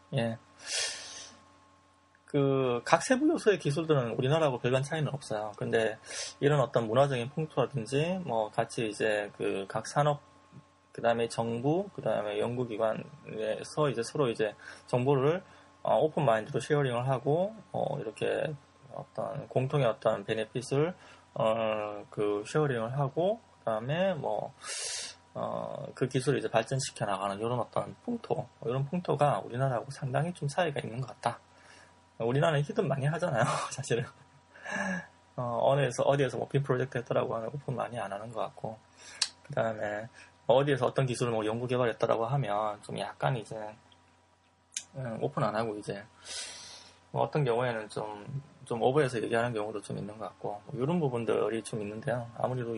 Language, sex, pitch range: English, male, 110-145 Hz